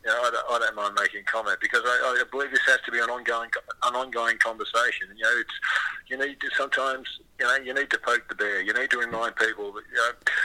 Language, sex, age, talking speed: English, male, 50-69, 260 wpm